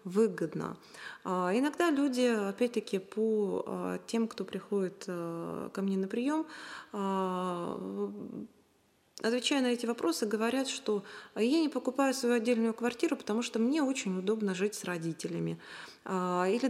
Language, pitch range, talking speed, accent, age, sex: Russian, 190-235 Hz, 120 wpm, native, 20-39, female